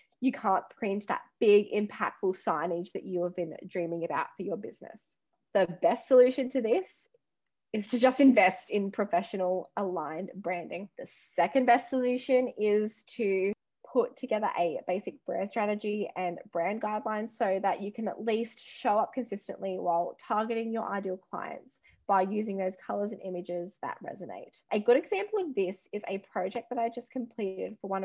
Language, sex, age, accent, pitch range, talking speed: English, female, 20-39, Australian, 185-235 Hz, 170 wpm